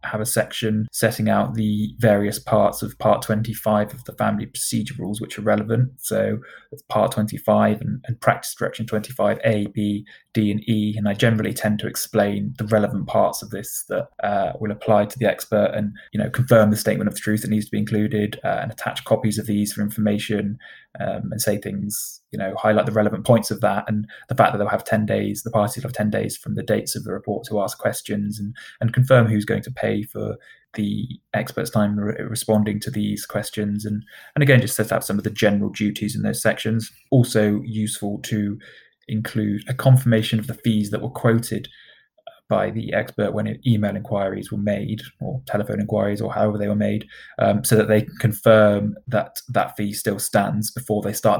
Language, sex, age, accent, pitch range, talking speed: English, male, 20-39, British, 105-115 Hz, 210 wpm